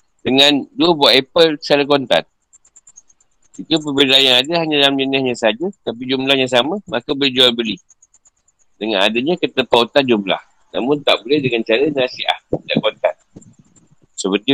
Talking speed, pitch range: 140 wpm, 125-150 Hz